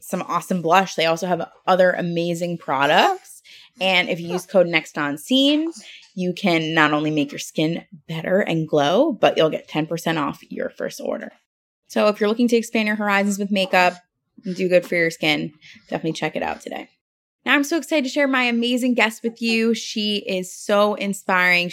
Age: 20-39